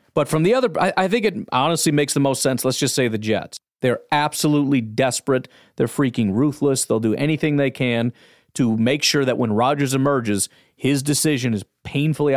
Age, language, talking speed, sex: 30-49, English, 195 wpm, male